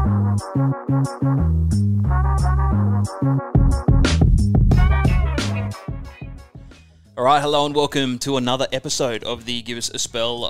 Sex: male